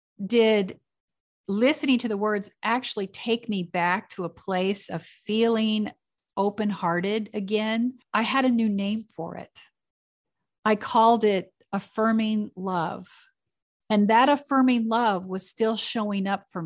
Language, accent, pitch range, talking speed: English, American, 185-230 Hz, 135 wpm